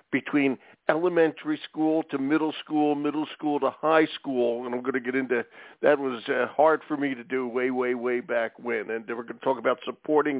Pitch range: 130-155 Hz